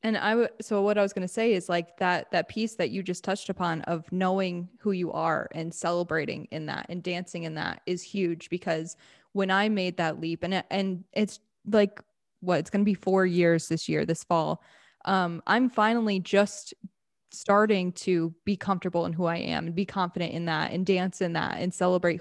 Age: 10-29